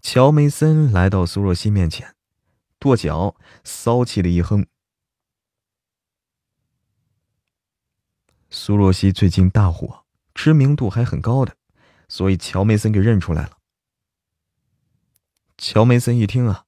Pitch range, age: 90-120 Hz, 20-39